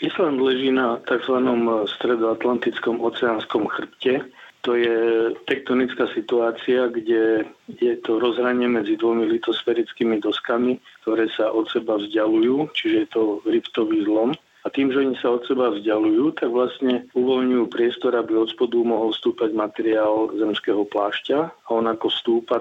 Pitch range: 110-125 Hz